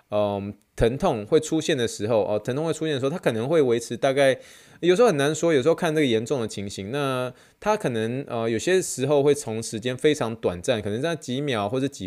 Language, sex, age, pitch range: Chinese, male, 20-39, 110-150 Hz